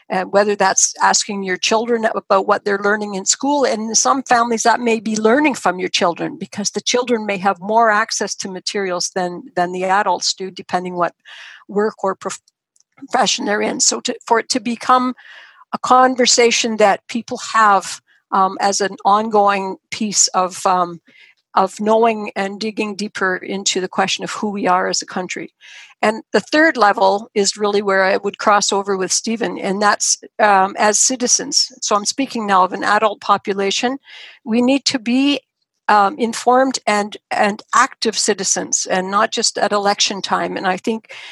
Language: English